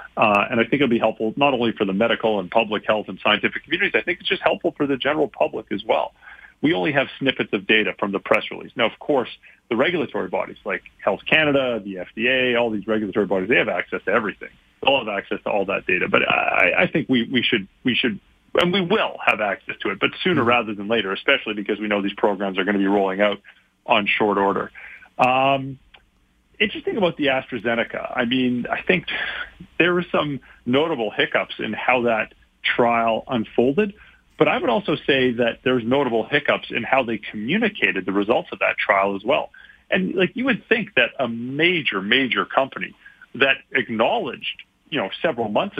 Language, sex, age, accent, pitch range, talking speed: English, male, 40-59, American, 105-140 Hz, 205 wpm